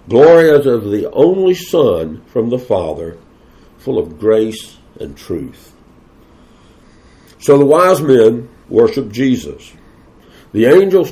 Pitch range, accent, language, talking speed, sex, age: 110-150 Hz, American, English, 120 wpm, male, 60-79